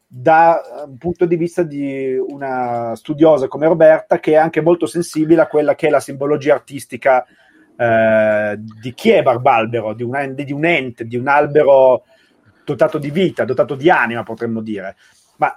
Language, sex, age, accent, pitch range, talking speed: Italian, male, 30-49, native, 125-160 Hz, 160 wpm